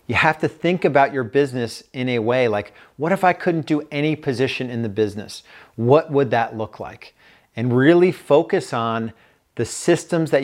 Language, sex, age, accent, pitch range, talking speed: English, male, 40-59, American, 115-145 Hz, 190 wpm